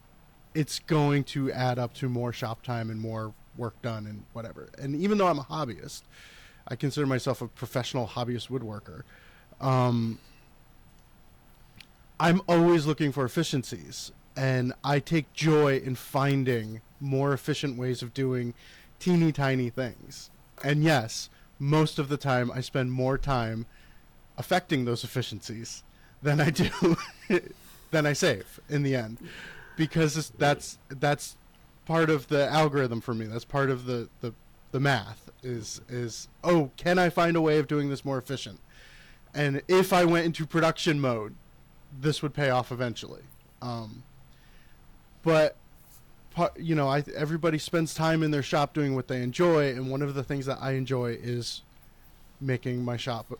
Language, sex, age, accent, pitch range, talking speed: English, male, 30-49, American, 120-150 Hz, 155 wpm